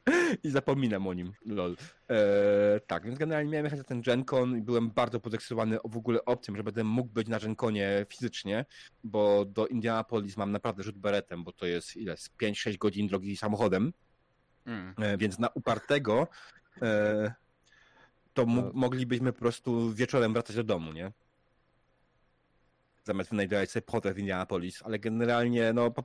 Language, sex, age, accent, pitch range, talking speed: Polish, male, 30-49, native, 100-120 Hz, 155 wpm